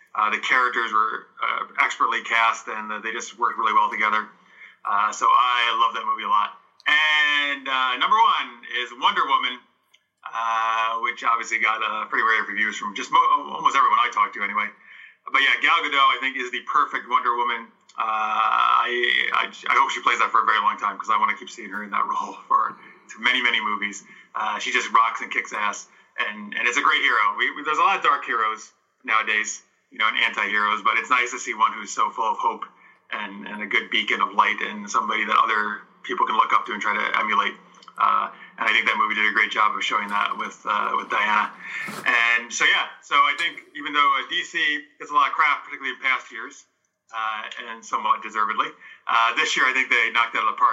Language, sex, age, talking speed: English, male, 30-49, 225 wpm